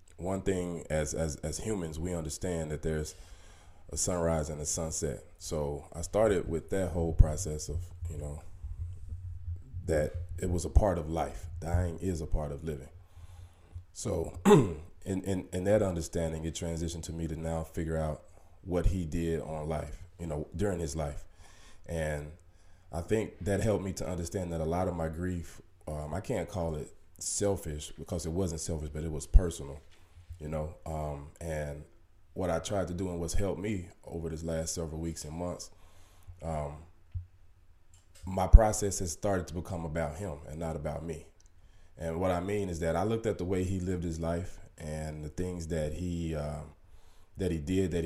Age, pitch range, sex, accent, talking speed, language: 20-39, 80-90 Hz, male, American, 185 wpm, English